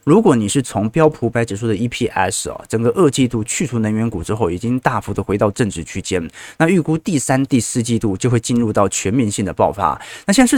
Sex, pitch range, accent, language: male, 100-130 Hz, native, Chinese